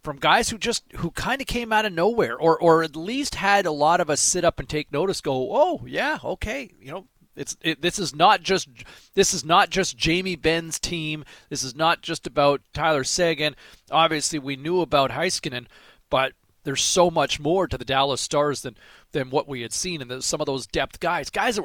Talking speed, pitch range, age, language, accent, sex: 220 wpm, 125-160 Hz, 40-59, English, American, male